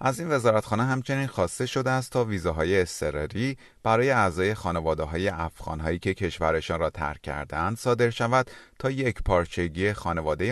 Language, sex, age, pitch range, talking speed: Persian, male, 30-49, 85-120 Hz, 155 wpm